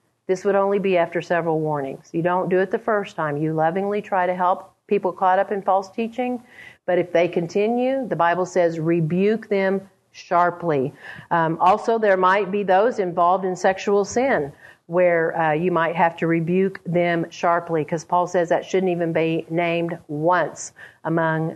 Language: English